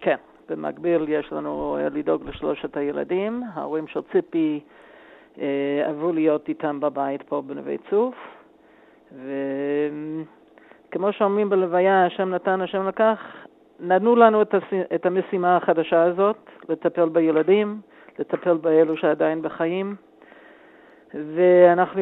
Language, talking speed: Hebrew, 100 wpm